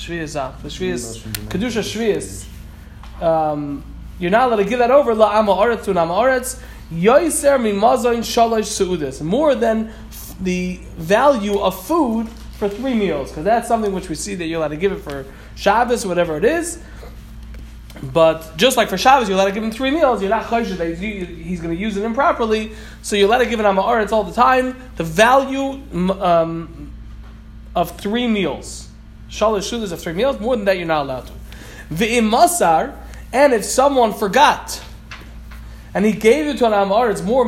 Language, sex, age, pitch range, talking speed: English, male, 20-39, 175-240 Hz, 160 wpm